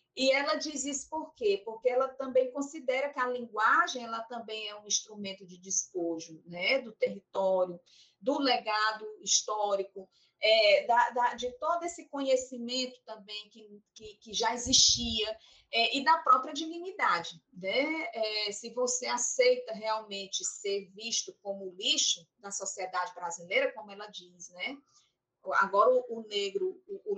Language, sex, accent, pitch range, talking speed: Portuguese, female, Brazilian, 195-265 Hz, 130 wpm